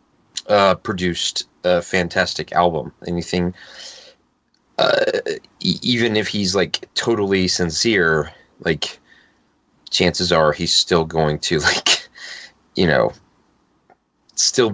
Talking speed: 100 wpm